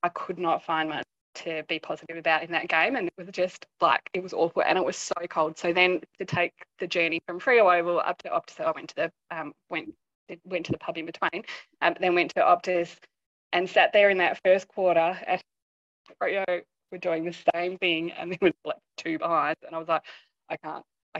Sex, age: female, 20-39